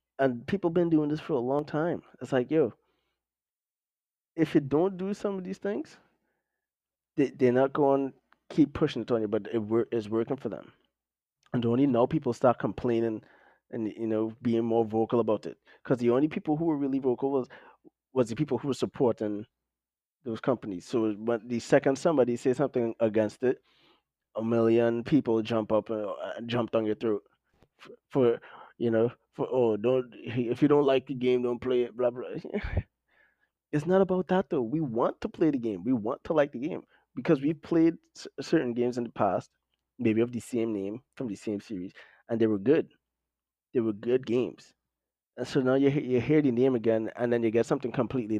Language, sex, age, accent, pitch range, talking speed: English, male, 20-39, American, 110-135 Hz, 200 wpm